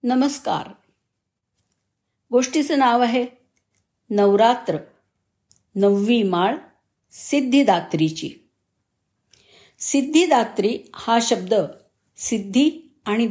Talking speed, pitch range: 60 wpm, 175-245 Hz